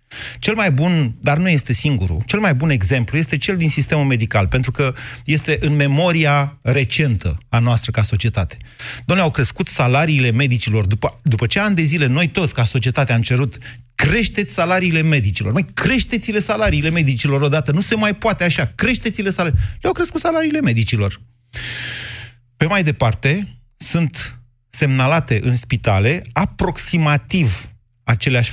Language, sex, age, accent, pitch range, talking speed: Romanian, male, 30-49, native, 115-155 Hz, 150 wpm